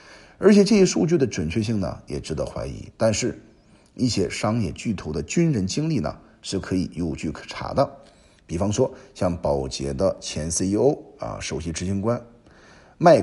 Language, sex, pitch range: Chinese, male, 90-140 Hz